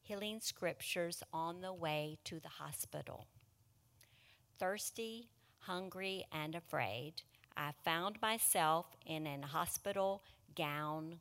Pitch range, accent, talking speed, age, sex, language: 140-185 Hz, American, 100 wpm, 40-59, female, English